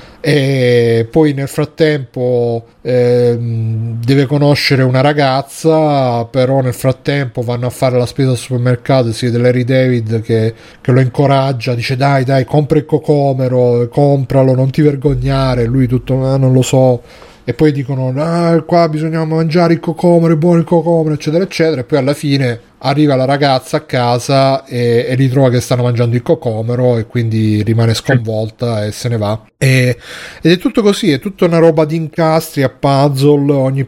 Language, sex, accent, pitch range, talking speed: Italian, male, native, 125-155 Hz, 170 wpm